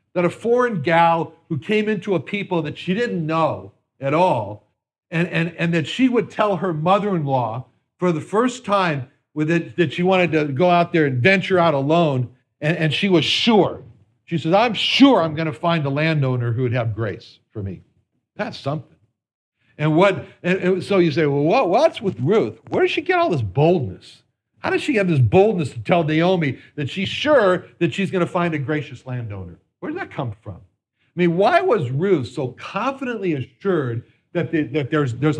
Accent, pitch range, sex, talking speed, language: American, 130-190 Hz, male, 205 wpm, English